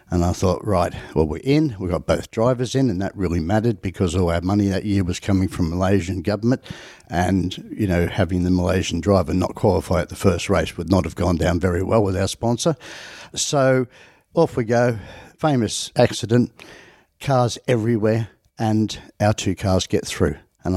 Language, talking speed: English, 190 wpm